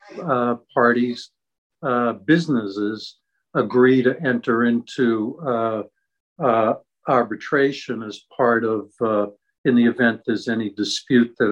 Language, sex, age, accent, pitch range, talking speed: English, male, 60-79, American, 110-130 Hz, 115 wpm